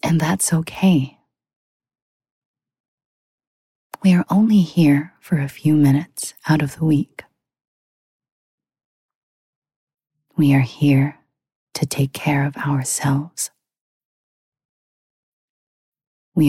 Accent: American